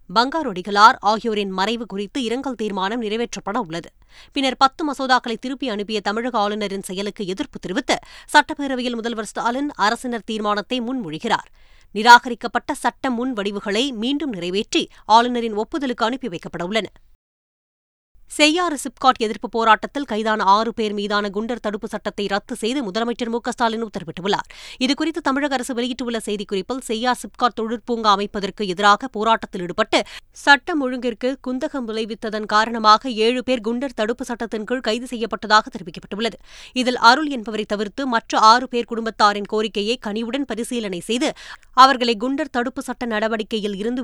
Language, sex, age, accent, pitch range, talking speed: Tamil, female, 20-39, native, 210-250 Hz, 125 wpm